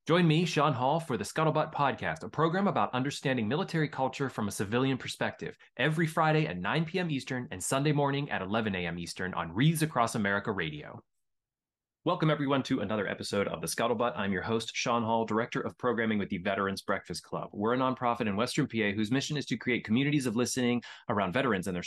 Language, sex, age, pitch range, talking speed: English, male, 20-39, 105-150 Hz, 205 wpm